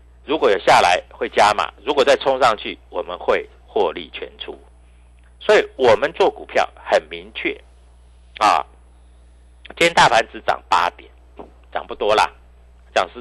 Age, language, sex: 50-69, Chinese, male